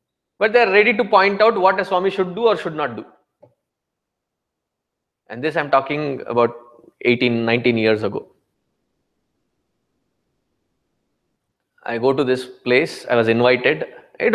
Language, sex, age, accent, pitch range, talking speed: English, male, 20-39, Indian, 145-195 Hz, 140 wpm